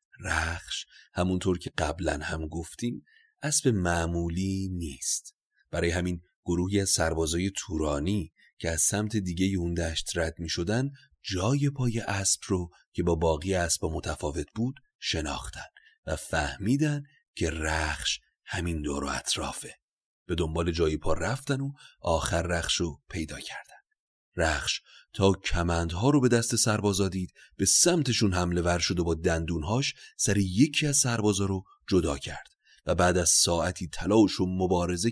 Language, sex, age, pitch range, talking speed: Persian, male, 30-49, 85-115 Hz, 140 wpm